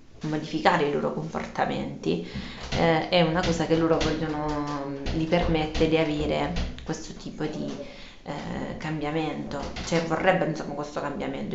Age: 20-39